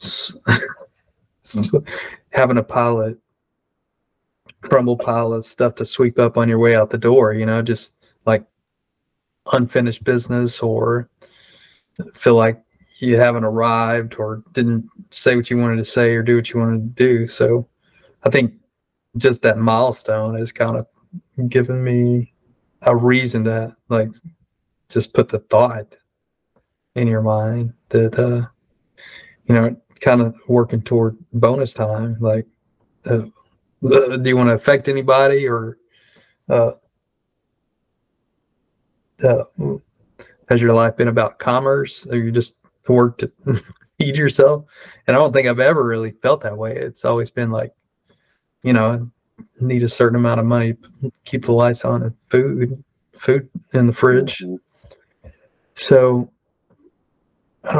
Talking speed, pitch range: 140 wpm, 115-130 Hz